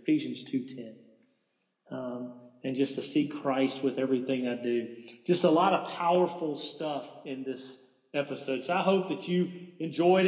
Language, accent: English, American